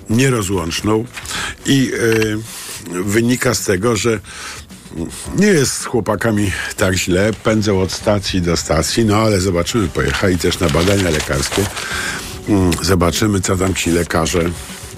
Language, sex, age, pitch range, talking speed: Polish, male, 50-69, 90-110 Hz, 130 wpm